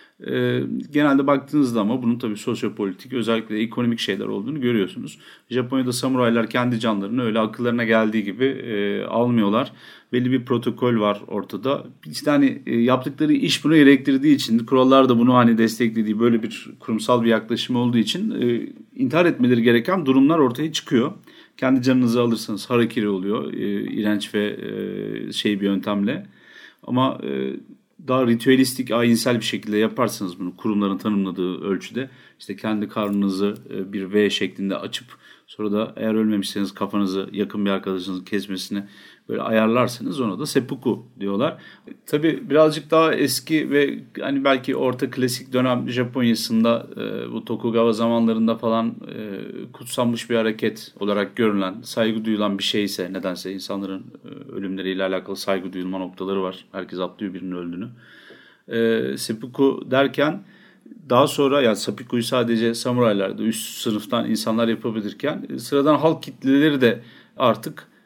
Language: Turkish